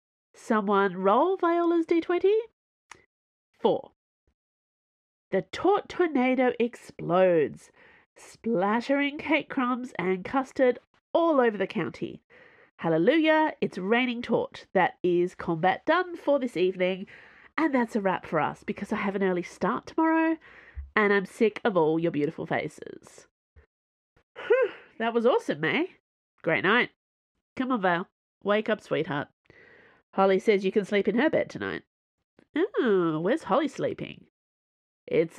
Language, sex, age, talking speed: English, female, 30-49, 130 wpm